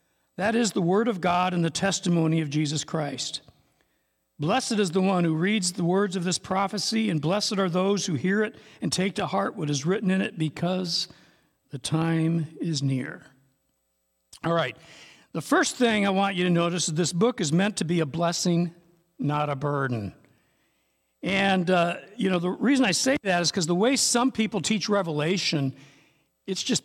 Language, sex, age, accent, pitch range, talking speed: English, male, 60-79, American, 160-200 Hz, 190 wpm